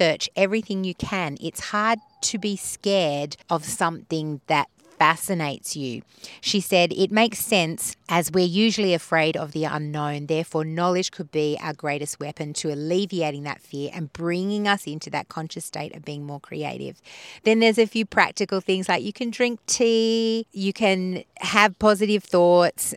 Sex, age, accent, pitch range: female, 30-49, Australian, 160-200 Hz